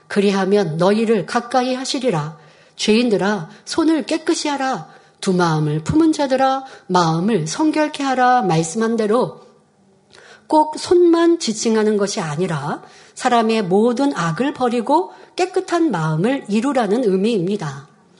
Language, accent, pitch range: Korean, native, 190-265 Hz